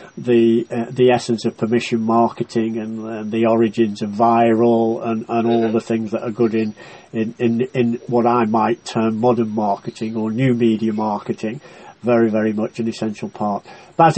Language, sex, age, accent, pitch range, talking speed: English, male, 50-69, British, 115-125 Hz, 180 wpm